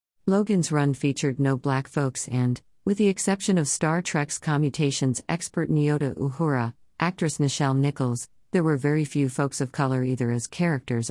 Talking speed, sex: 160 wpm, female